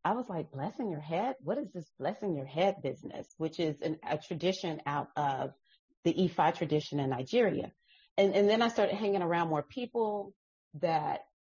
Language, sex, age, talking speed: English, female, 40-59, 185 wpm